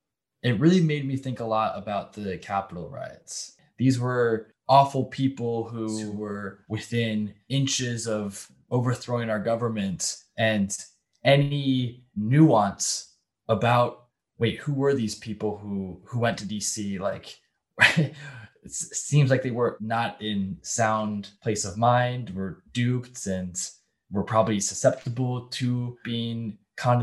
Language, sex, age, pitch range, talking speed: English, male, 20-39, 105-125 Hz, 130 wpm